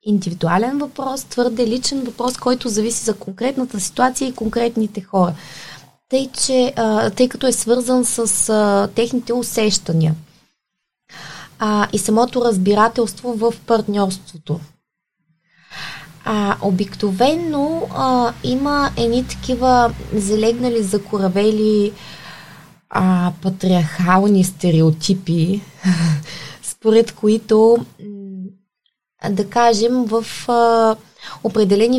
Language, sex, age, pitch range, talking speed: Bulgarian, female, 20-39, 180-235 Hz, 90 wpm